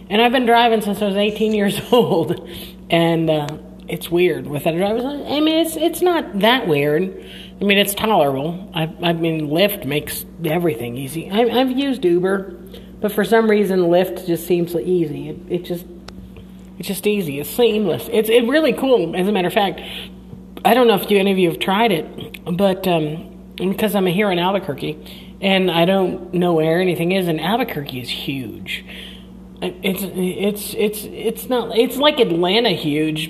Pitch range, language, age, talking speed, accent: 170-210 Hz, English, 40-59, 185 wpm, American